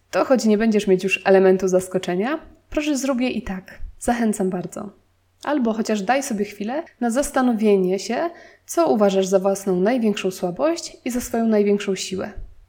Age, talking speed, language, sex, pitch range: 20-39, 160 wpm, Polish, female, 190-245 Hz